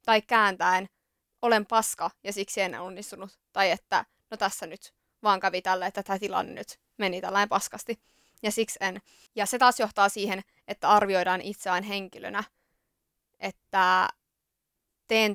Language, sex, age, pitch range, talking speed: Finnish, female, 20-39, 195-220 Hz, 145 wpm